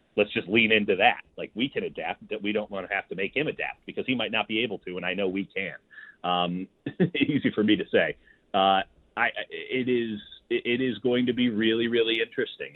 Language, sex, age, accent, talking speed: English, male, 30-49, American, 230 wpm